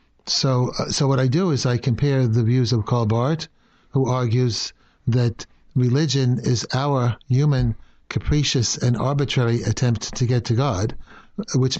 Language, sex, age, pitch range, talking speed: English, male, 60-79, 120-135 Hz, 155 wpm